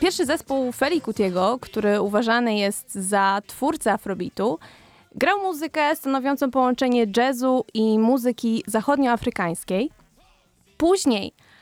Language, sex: Polish, female